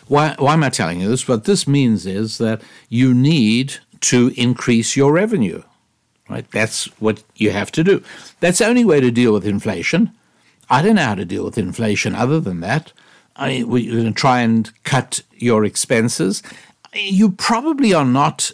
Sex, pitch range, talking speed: male, 115-160 Hz, 185 wpm